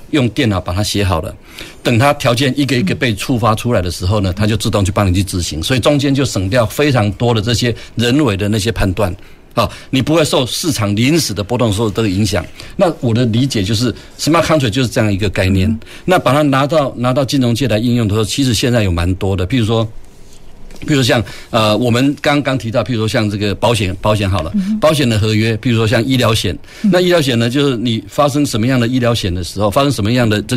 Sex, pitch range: male, 105-125 Hz